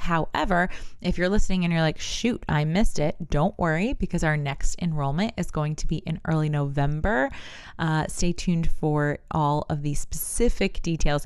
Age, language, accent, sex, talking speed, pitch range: 20-39, English, American, female, 175 wpm, 150-180 Hz